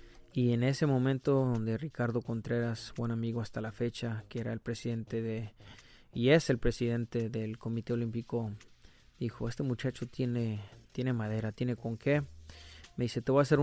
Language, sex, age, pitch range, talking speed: English, male, 30-49, 115-140 Hz, 170 wpm